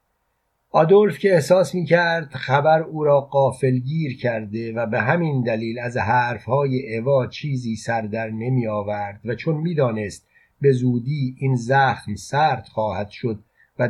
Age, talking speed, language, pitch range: 50-69, 145 wpm, Persian, 115-135 Hz